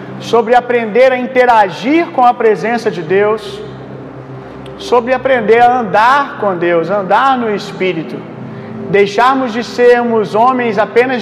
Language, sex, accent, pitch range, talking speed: Gujarati, male, Brazilian, 205-250 Hz, 125 wpm